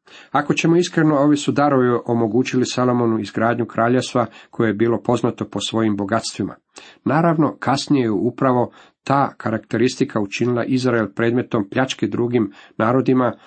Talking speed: 130 wpm